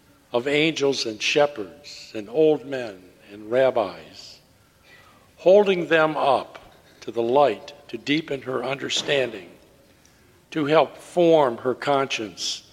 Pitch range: 125-150 Hz